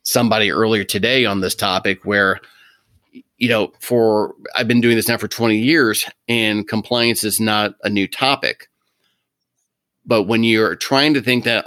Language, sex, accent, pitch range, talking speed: English, male, American, 100-120 Hz, 165 wpm